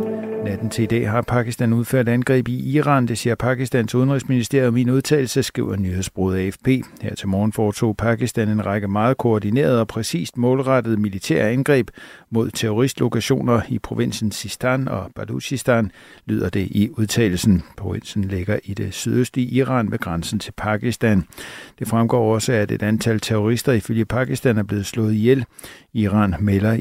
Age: 60-79